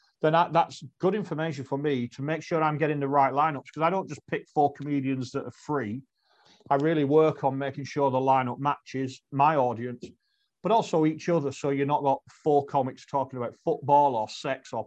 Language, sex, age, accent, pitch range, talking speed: English, male, 40-59, British, 130-150 Hz, 210 wpm